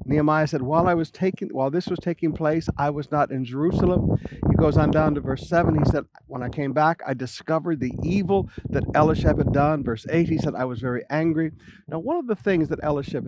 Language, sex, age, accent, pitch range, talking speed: English, male, 50-69, American, 135-175 Hz, 235 wpm